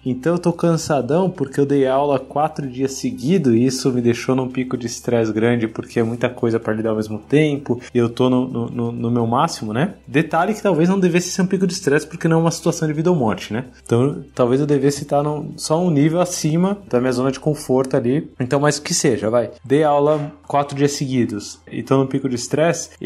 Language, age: Portuguese, 20-39